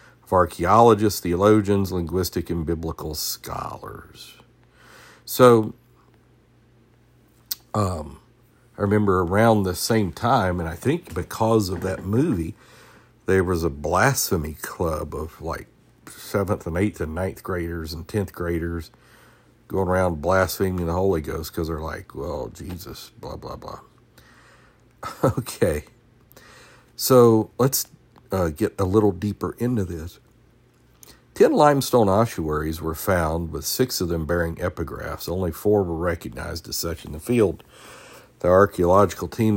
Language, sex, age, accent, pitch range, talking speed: English, male, 50-69, American, 85-110 Hz, 130 wpm